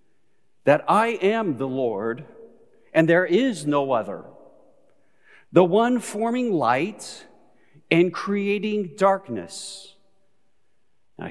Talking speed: 95 wpm